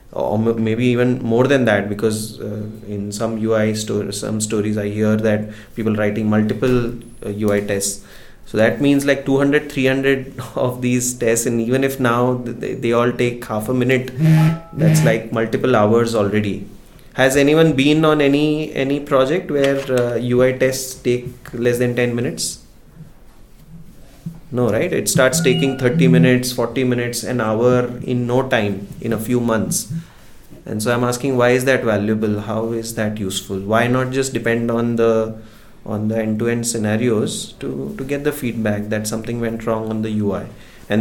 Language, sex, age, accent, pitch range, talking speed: English, male, 20-39, Indian, 110-130 Hz, 170 wpm